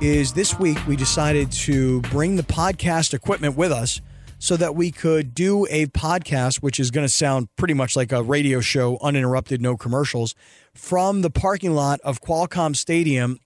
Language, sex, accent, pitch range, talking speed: English, male, American, 135-170 Hz, 180 wpm